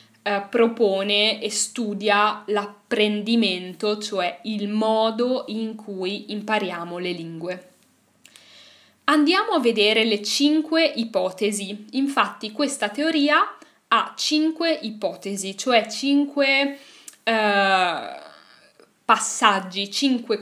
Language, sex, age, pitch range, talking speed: Italian, female, 10-29, 205-250 Hz, 90 wpm